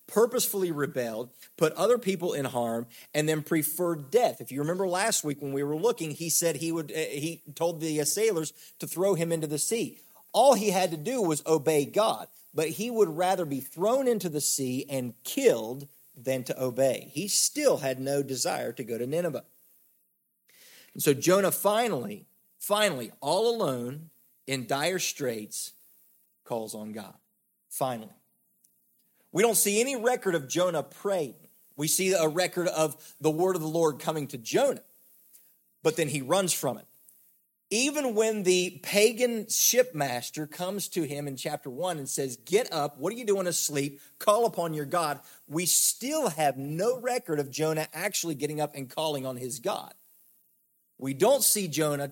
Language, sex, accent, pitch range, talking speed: English, male, American, 140-190 Hz, 170 wpm